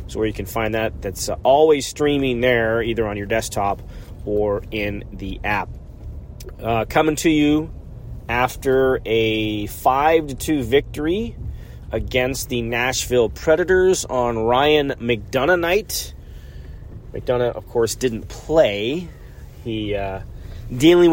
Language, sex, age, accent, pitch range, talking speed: English, male, 30-49, American, 105-130 Hz, 120 wpm